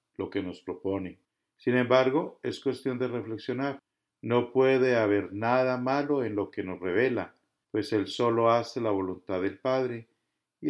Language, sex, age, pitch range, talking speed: English, male, 50-69, 100-125 Hz, 165 wpm